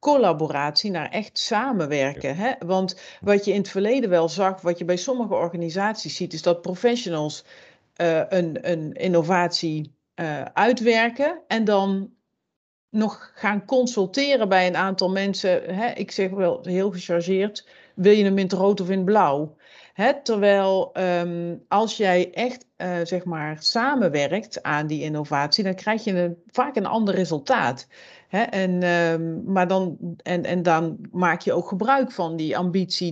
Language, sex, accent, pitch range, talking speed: Dutch, female, Dutch, 170-210 Hz, 160 wpm